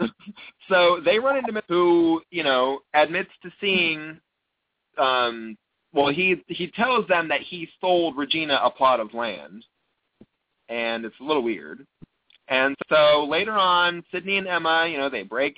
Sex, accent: male, American